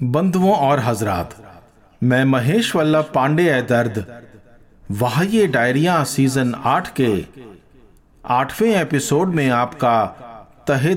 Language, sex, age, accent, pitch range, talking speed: Hindi, male, 50-69, native, 105-150 Hz, 105 wpm